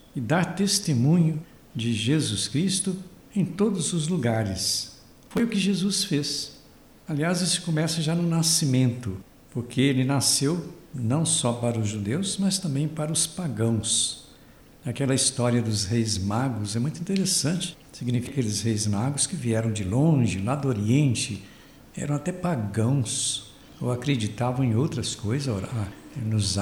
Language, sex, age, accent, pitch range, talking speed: Portuguese, male, 60-79, Brazilian, 115-155 Hz, 140 wpm